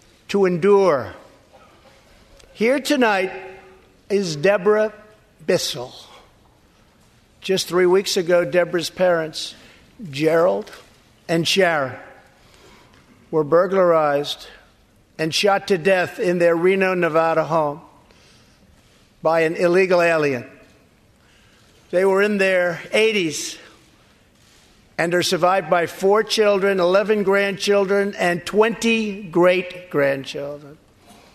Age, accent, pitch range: 50-69, American, 160-195 Hz